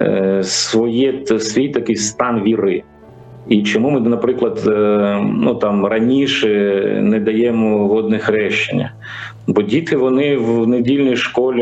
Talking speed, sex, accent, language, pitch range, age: 115 wpm, male, native, Ukrainian, 110-135 Hz, 40-59